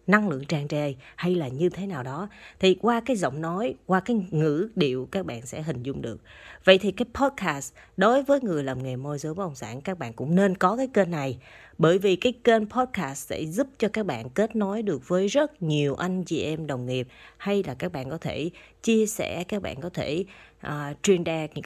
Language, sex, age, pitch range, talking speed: Vietnamese, female, 30-49, 135-200 Hz, 230 wpm